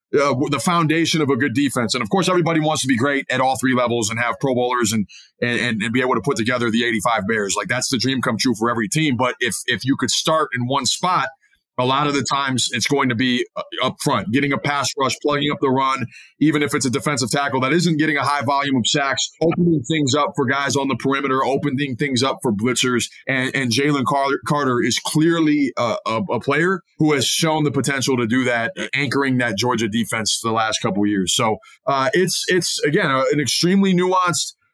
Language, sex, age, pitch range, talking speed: English, male, 20-39, 125-155 Hz, 230 wpm